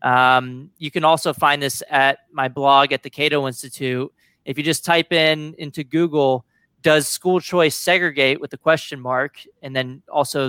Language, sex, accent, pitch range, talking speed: English, male, American, 135-160 Hz, 175 wpm